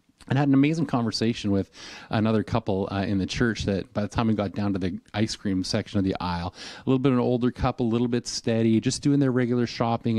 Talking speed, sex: 255 wpm, male